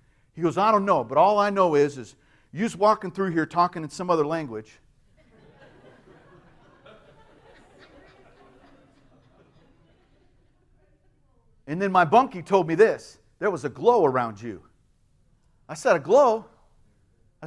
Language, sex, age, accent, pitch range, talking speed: English, male, 50-69, American, 160-250 Hz, 130 wpm